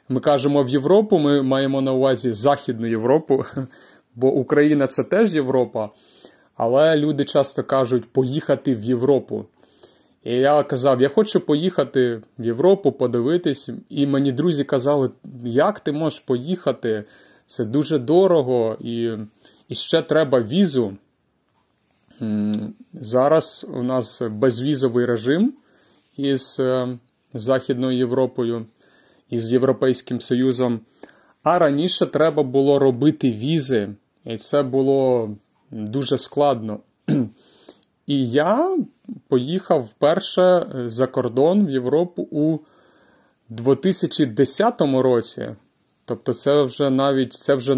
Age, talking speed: 30-49, 110 wpm